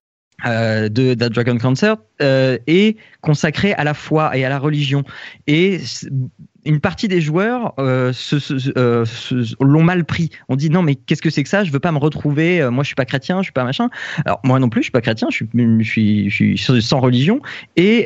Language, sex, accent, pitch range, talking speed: French, male, French, 115-155 Hz, 235 wpm